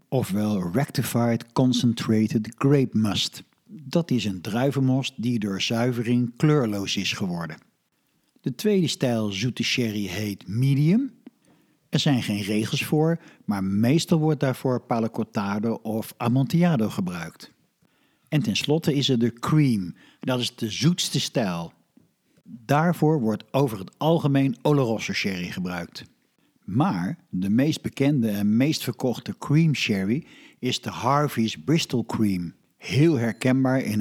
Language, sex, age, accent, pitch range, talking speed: Dutch, male, 60-79, Dutch, 110-145 Hz, 125 wpm